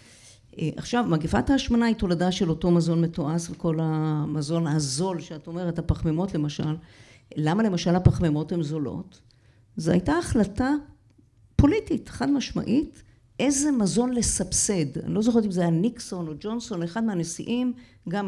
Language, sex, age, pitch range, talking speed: Hebrew, female, 50-69, 160-210 Hz, 140 wpm